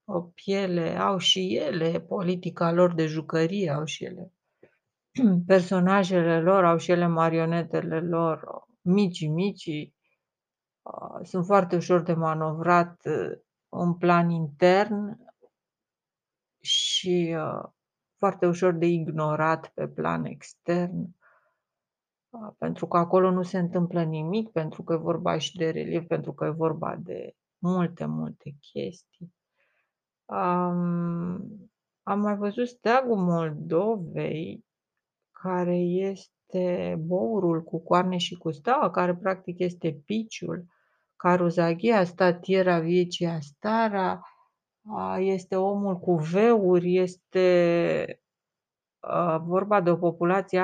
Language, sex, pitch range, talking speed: Romanian, female, 165-190 Hz, 110 wpm